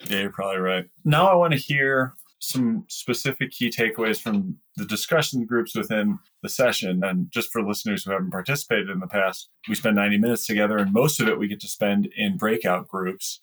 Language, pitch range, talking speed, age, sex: English, 95-140 Hz, 205 wpm, 20-39, male